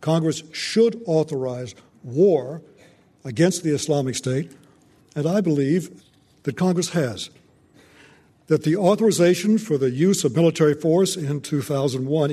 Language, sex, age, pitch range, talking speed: English, male, 60-79, 140-170 Hz, 120 wpm